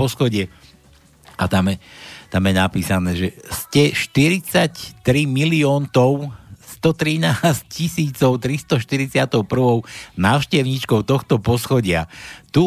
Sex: male